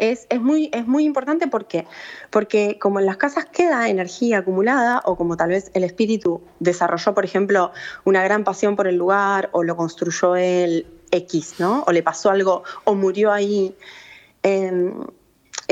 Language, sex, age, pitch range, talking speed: Spanish, female, 20-39, 175-230 Hz, 170 wpm